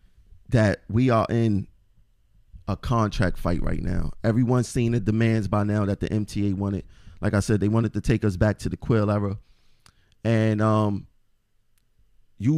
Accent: American